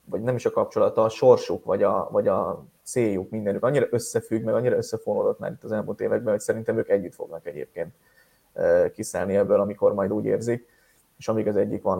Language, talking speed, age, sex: Hungarian, 200 wpm, 20-39, male